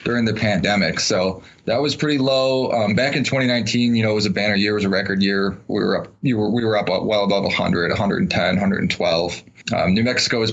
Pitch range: 100-120 Hz